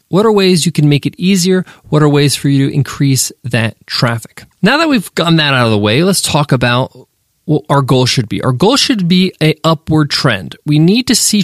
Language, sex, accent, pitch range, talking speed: English, male, American, 135-170 Hz, 235 wpm